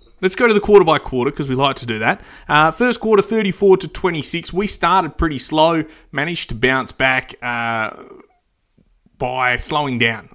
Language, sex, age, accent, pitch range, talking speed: English, male, 20-39, Australian, 120-150 Hz, 175 wpm